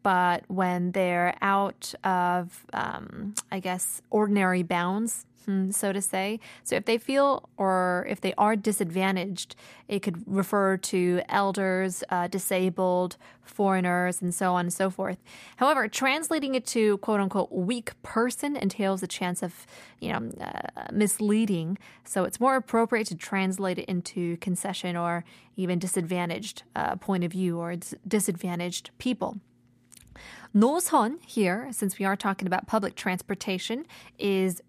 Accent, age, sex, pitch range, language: American, 20-39, female, 180-225 Hz, Korean